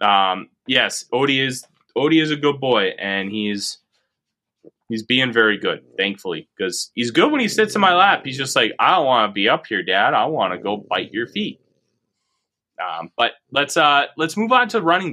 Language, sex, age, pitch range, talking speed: English, male, 20-39, 110-155 Hz, 205 wpm